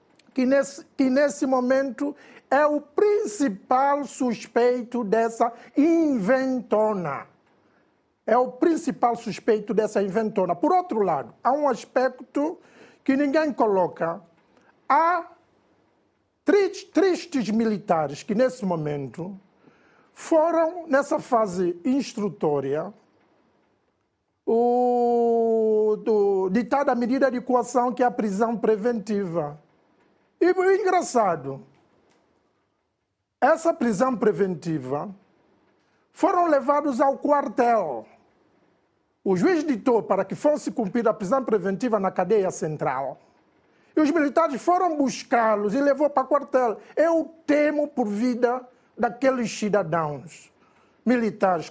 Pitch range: 215-290 Hz